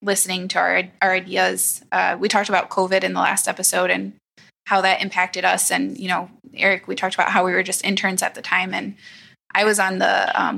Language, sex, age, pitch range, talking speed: English, female, 20-39, 185-200 Hz, 225 wpm